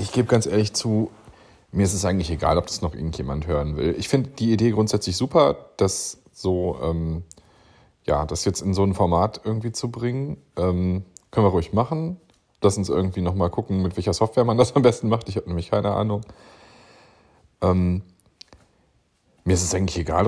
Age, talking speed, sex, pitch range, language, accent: 30-49, 190 wpm, male, 85-110 Hz, German, German